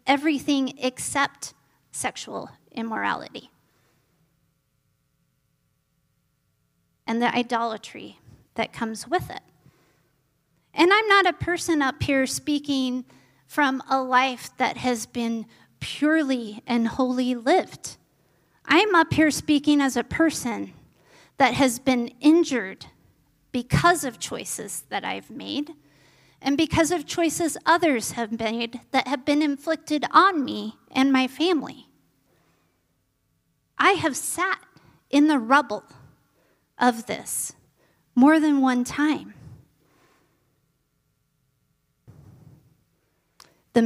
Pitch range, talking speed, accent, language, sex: 220-295 Hz, 105 wpm, American, English, female